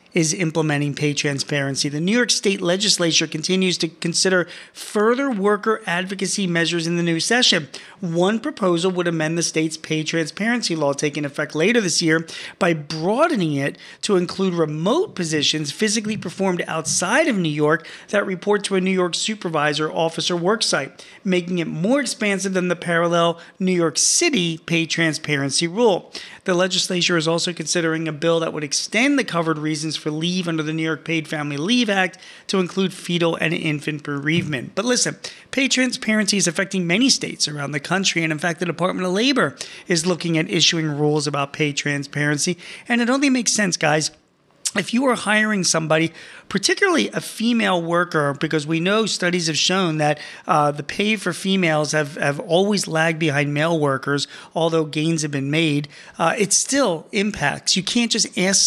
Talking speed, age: 175 wpm, 40-59